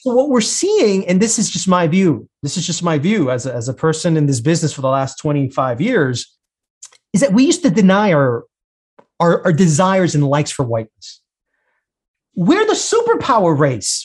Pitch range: 180-245 Hz